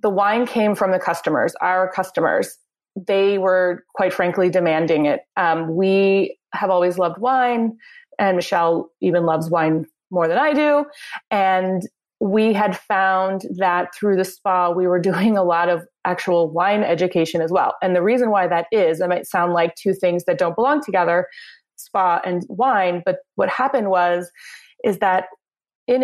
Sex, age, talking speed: female, 30-49, 170 wpm